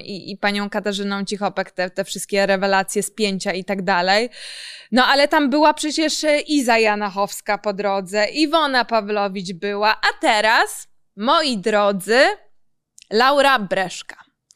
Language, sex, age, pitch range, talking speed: Polish, female, 20-39, 205-280 Hz, 130 wpm